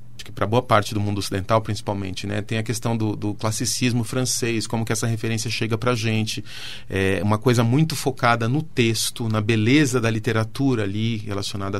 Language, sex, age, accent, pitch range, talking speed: Portuguese, male, 40-59, Brazilian, 110-130 Hz, 185 wpm